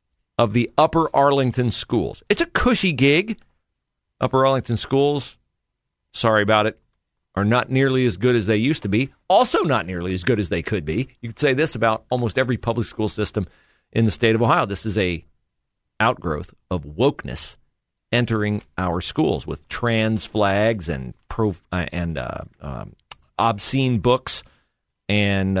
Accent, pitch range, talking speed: American, 95-125 Hz, 165 wpm